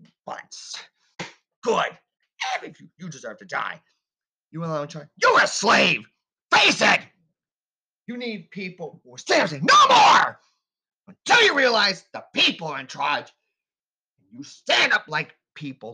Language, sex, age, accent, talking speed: English, male, 30-49, American, 160 wpm